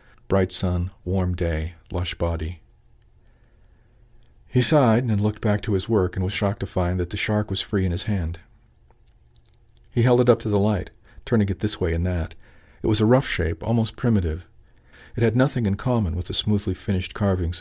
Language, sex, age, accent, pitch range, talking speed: English, male, 50-69, American, 90-105 Hz, 195 wpm